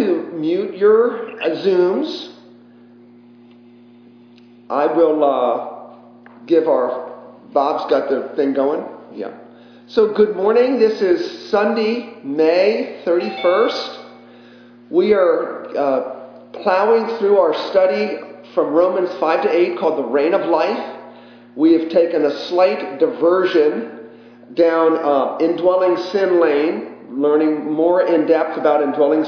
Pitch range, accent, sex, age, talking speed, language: 145-220 Hz, American, male, 40-59, 115 wpm, English